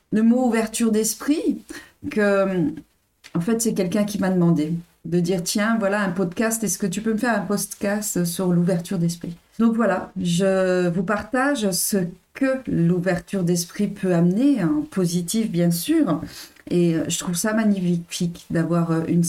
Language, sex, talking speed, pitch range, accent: French, female, 160 wpm, 170-210 Hz, French